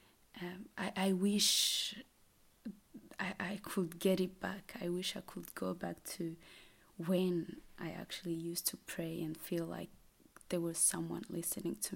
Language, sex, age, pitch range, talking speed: Finnish, female, 20-39, 165-190 Hz, 155 wpm